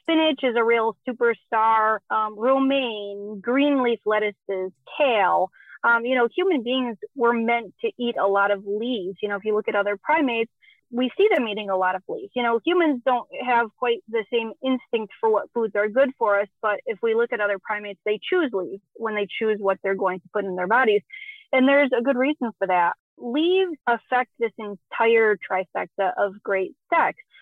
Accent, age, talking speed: American, 30-49, 200 wpm